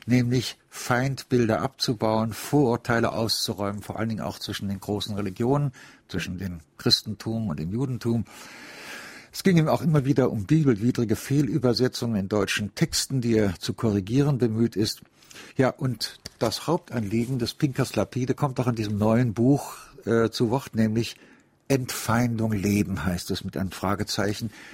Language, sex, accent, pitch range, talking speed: German, male, German, 105-125 Hz, 150 wpm